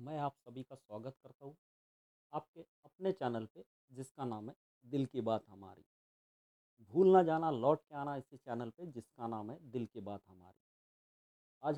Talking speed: 180 wpm